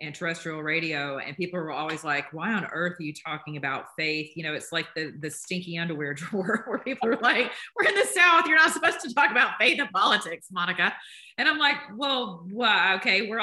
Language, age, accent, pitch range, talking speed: English, 30-49, American, 160-210 Hz, 225 wpm